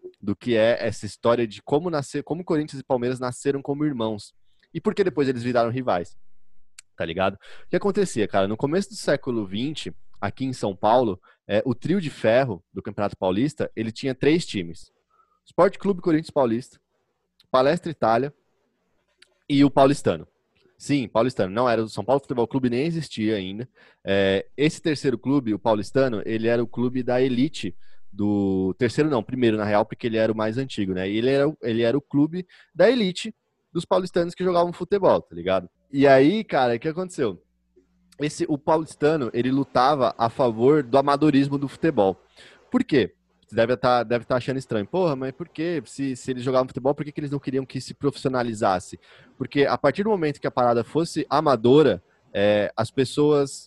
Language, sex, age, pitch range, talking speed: Portuguese, male, 20-39, 115-150 Hz, 185 wpm